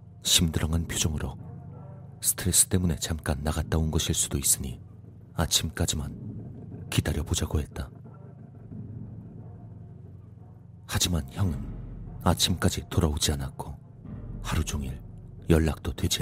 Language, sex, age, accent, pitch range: Korean, male, 40-59, native, 80-120 Hz